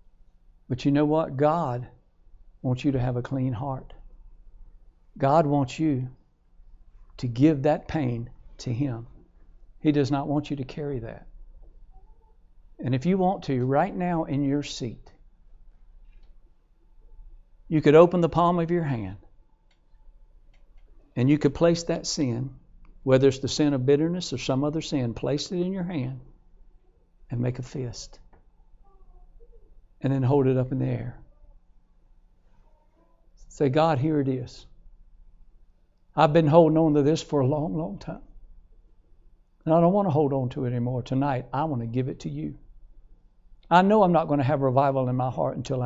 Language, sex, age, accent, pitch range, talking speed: English, male, 60-79, American, 90-150 Hz, 165 wpm